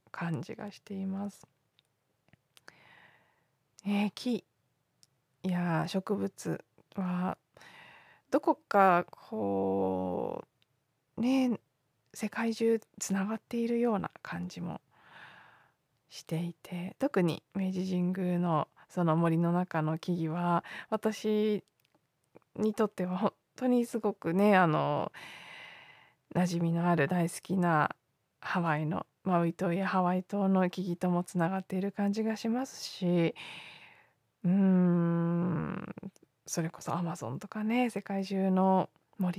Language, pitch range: Japanese, 170-205 Hz